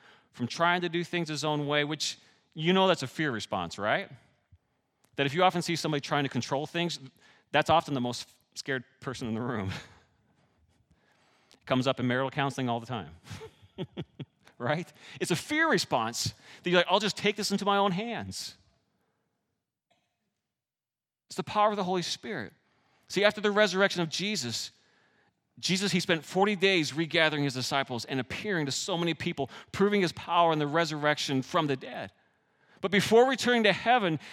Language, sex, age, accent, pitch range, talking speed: English, male, 30-49, American, 135-190 Hz, 175 wpm